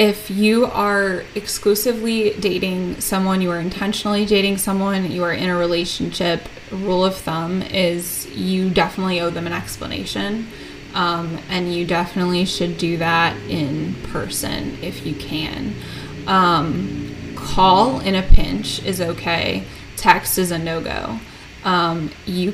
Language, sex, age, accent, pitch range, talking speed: English, female, 20-39, American, 175-200 Hz, 135 wpm